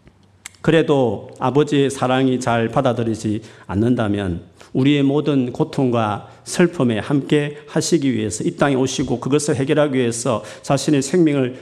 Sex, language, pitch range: male, Korean, 110-145 Hz